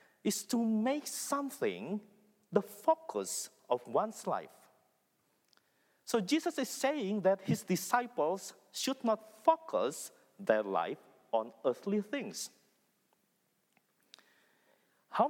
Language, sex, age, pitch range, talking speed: English, male, 50-69, 195-260 Hz, 100 wpm